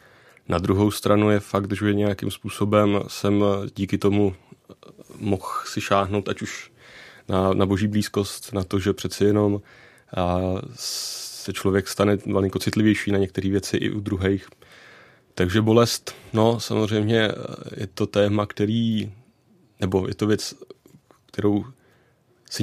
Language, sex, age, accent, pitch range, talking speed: Czech, male, 30-49, native, 95-110 Hz, 135 wpm